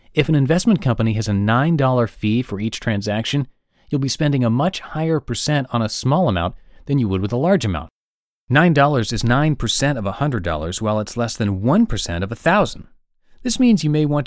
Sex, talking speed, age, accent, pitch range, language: male, 195 wpm, 30-49, American, 95-145 Hz, English